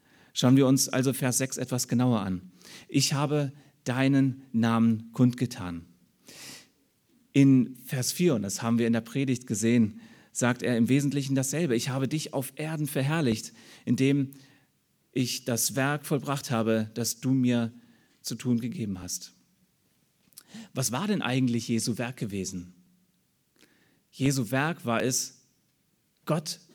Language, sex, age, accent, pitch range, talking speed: German, male, 30-49, German, 115-145 Hz, 135 wpm